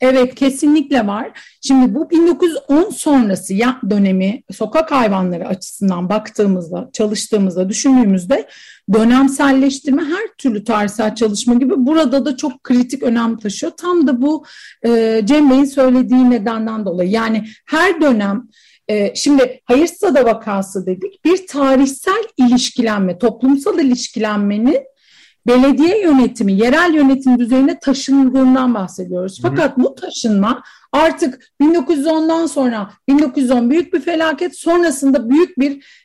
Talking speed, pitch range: 110 wpm, 225-295 Hz